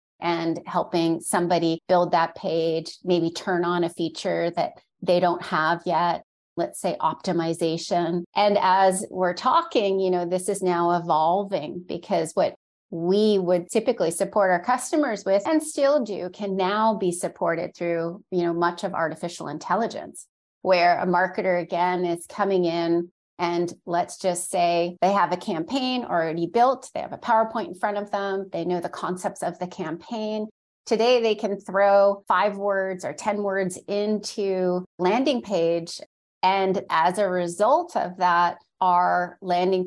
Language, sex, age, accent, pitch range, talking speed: English, female, 30-49, American, 175-205 Hz, 155 wpm